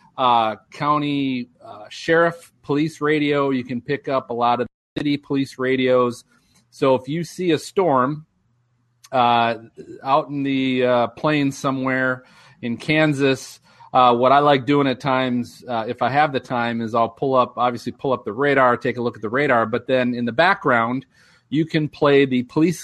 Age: 40-59